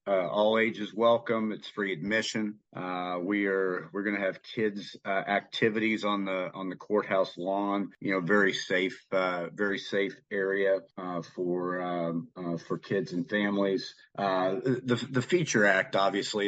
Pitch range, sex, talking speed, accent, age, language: 90-105 Hz, male, 165 wpm, American, 50-69, English